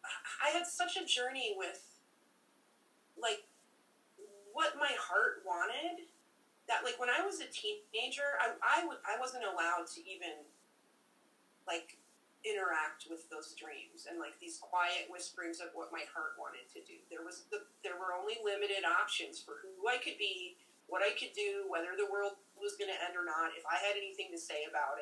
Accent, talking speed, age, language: American, 180 wpm, 30-49, English